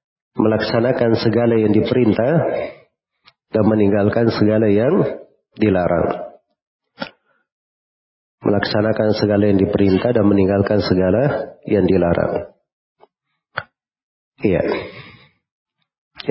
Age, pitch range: 40-59, 100-120 Hz